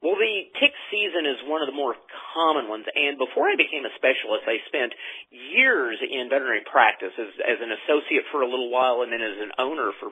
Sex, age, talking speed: male, 40-59, 220 wpm